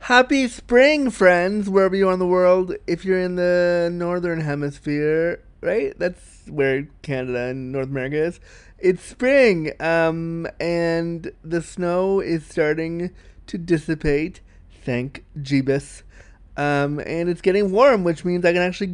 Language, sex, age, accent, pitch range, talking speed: English, male, 20-39, American, 155-190 Hz, 135 wpm